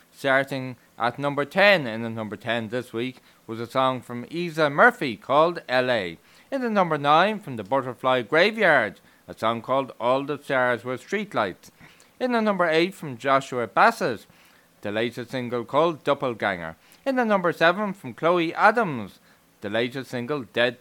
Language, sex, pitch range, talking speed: English, male, 120-165 Hz, 165 wpm